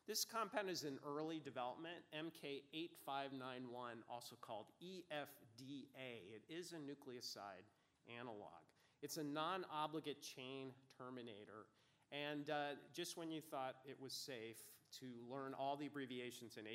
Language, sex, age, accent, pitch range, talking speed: English, male, 40-59, American, 125-155 Hz, 125 wpm